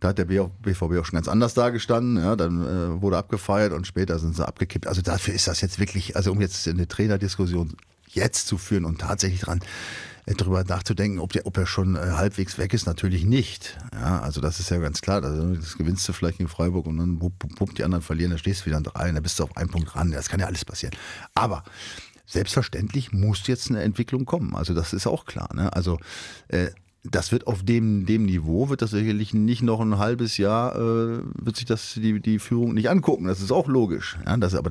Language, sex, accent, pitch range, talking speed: German, male, German, 90-115 Hz, 235 wpm